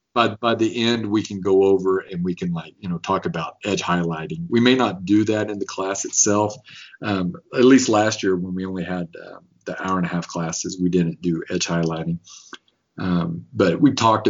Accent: American